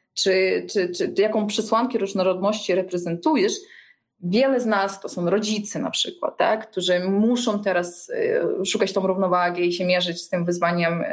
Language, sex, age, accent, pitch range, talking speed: Polish, female, 20-39, native, 180-220 Hz, 150 wpm